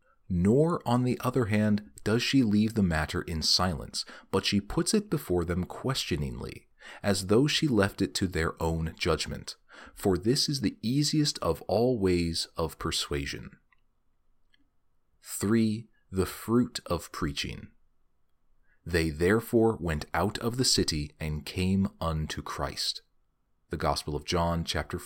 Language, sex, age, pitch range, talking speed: English, male, 30-49, 85-115 Hz, 140 wpm